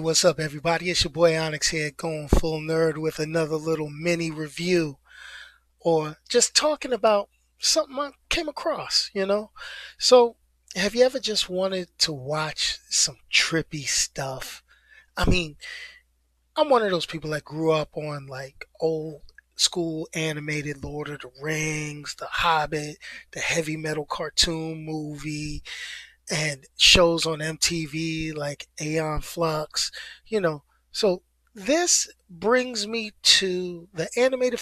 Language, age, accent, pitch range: English, 20-39, American, 155-200 Hz